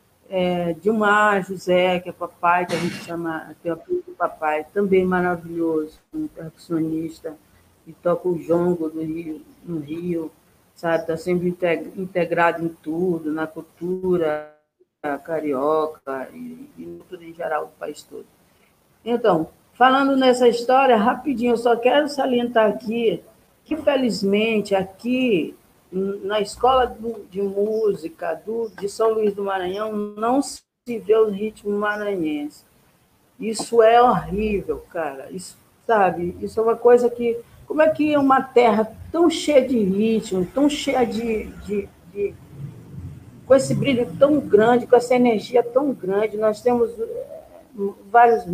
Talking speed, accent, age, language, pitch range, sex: 135 wpm, Brazilian, 50-69, Portuguese, 175-240 Hz, female